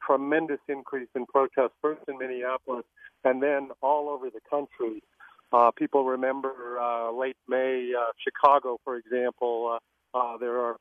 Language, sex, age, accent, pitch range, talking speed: English, male, 40-59, American, 125-145 Hz, 150 wpm